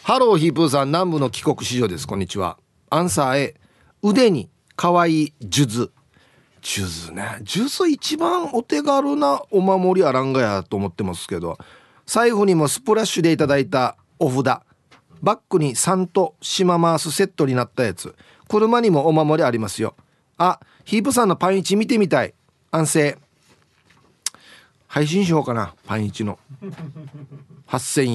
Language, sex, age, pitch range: Japanese, male, 40-59, 130-190 Hz